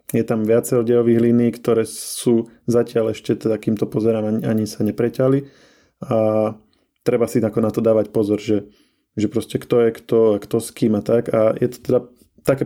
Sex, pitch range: male, 110-120 Hz